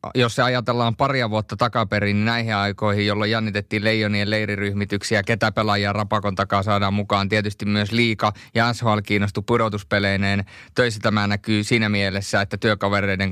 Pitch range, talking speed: 100-120 Hz, 150 wpm